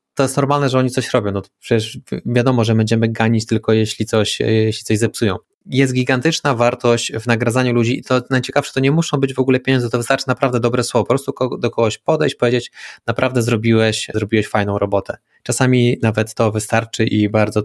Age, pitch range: 20-39, 110-130 Hz